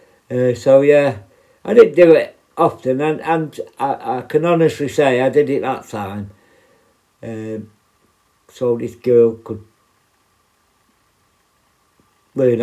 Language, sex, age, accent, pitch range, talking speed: English, male, 60-79, British, 110-145 Hz, 125 wpm